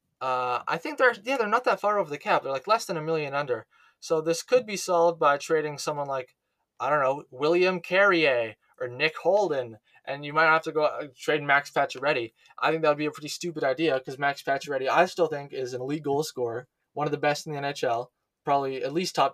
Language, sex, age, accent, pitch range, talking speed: English, male, 20-39, American, 135-180 Hz, 235 wpm